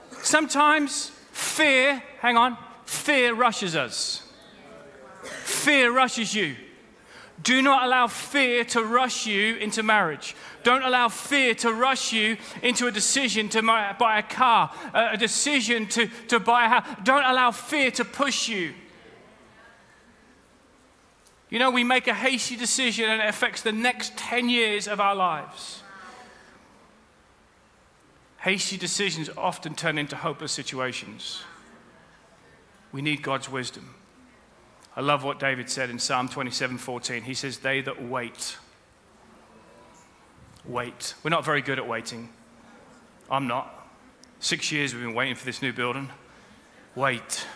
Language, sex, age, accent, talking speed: English, male, 30-49, British, 130 wpm